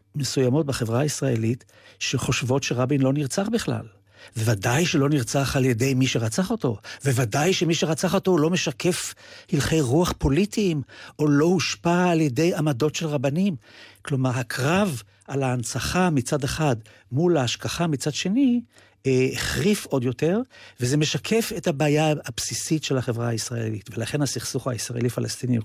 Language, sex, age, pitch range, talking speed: Hebrew, male, 50-69, 125-175 Hz, 135 wpm